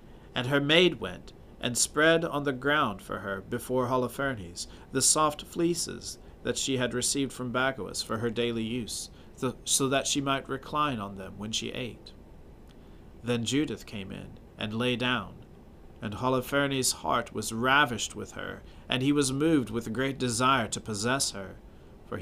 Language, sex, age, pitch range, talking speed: English, male, 40-59, 105-130 Hz, 165 wpm